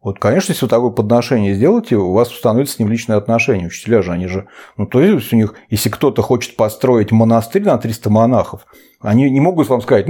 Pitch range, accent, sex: 105-135 Hz, native, male